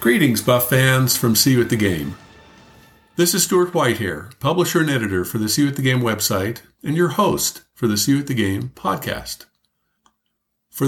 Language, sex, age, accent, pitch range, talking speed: English, male, 50-69, American, 115-150 Hz, 205 wpm